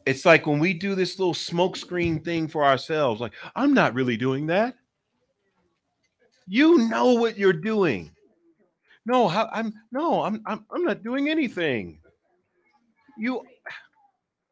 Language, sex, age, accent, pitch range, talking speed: English, male, 40-59, American, 155-240 Hz, 130 wpm